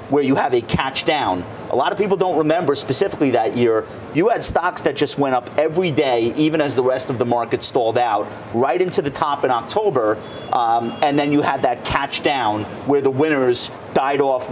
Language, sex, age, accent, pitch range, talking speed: English, male, 40-59, American, 125-155 Hz, 215 wpm